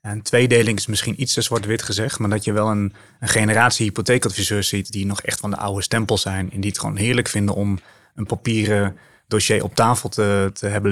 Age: 30-49